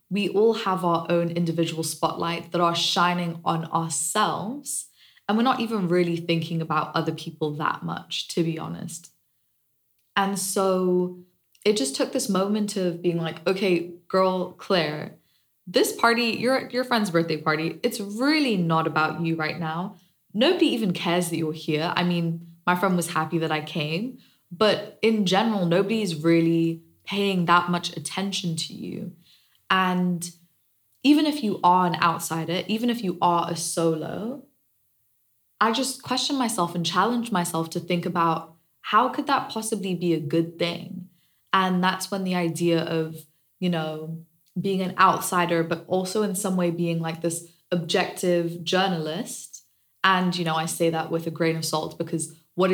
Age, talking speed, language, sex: 20-39, 165 wpm, English, female